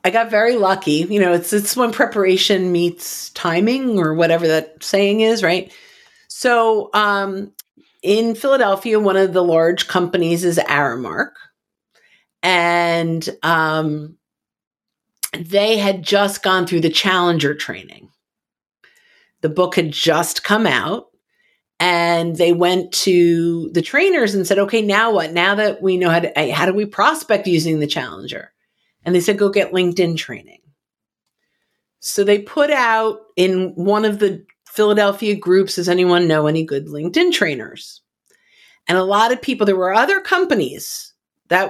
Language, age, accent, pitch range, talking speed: English, 50-69, American, 170-215 Hz, 150 wpm